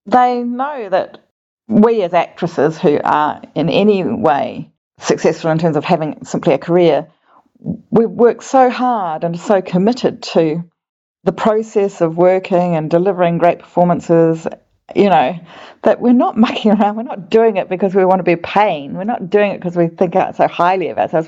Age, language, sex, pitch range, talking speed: 40-59, English, female, 170-220 Hz, 180 wpm